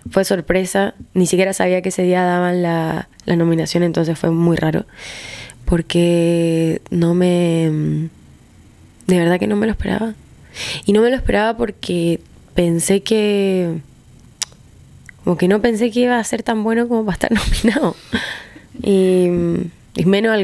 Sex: female